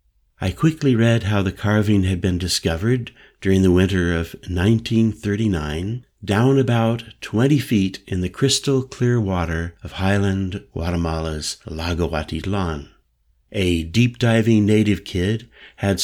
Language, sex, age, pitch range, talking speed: English, male, 60-79, 90-115 Hz, 120 wpm